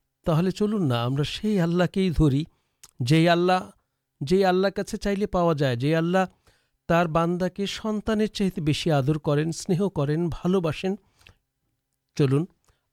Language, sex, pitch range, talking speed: Urdu, male, 135-170 Hz, 130 wpm